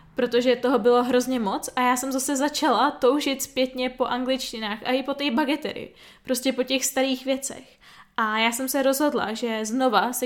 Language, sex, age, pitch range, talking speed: Czech, female, 10-29, 225-250 Hz, 185 wpm